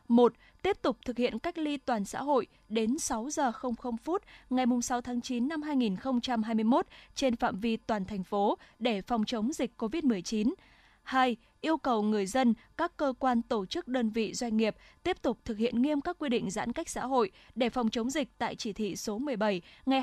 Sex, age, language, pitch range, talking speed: female, 20-39, Vietnamese, 220-275 Hz, 205 wpm